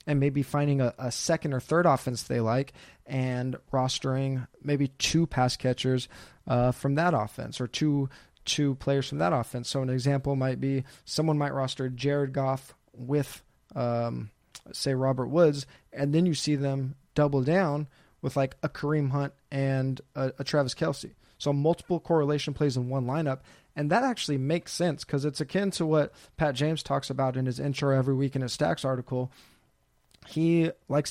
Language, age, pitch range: English, 20-39, 130-150 Hz